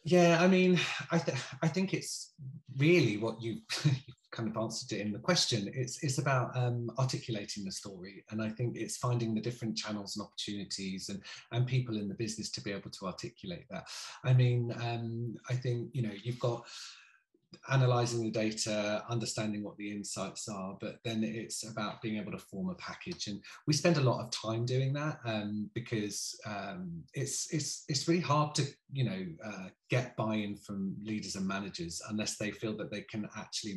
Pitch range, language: 105-135 Hz, English